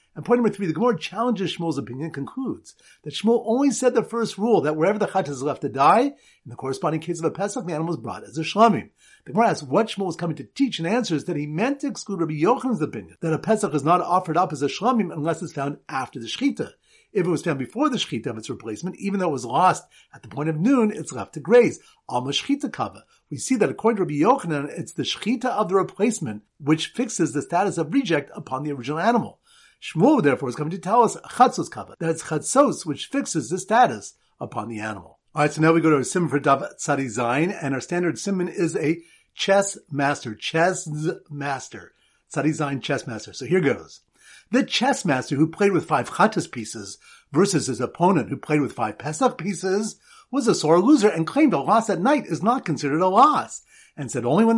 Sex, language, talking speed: male, English, 225 wpm